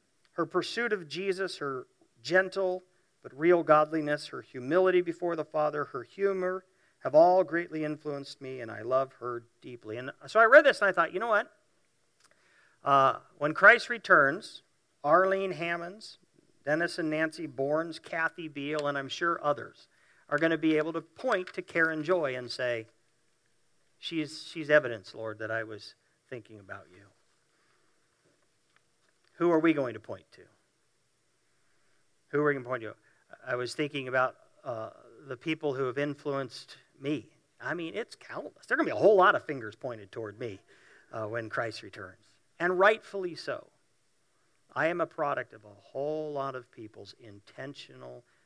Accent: American